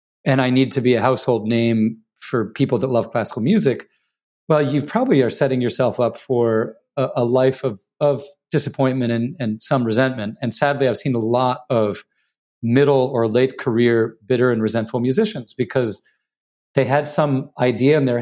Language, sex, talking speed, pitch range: English, male, 180 wpm, 115-145 Hz